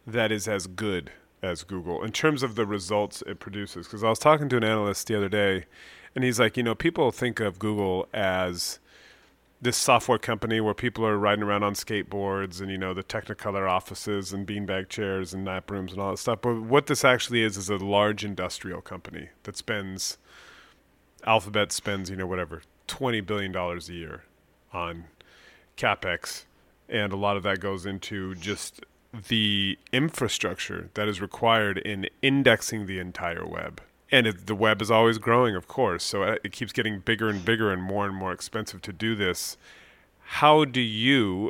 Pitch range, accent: 95-110 Hz, American